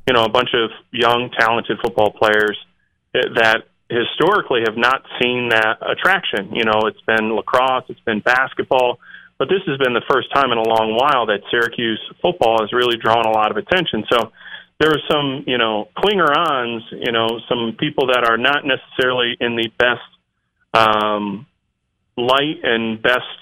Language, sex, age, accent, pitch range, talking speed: English, male, 30-49, American, 110-130 Hz, 170 wpm